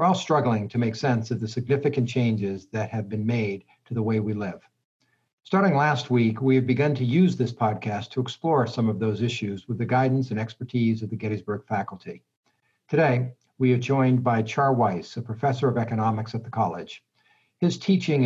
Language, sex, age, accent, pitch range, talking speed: English, male, 60-79, American, 110-130 Hz, 195 wpm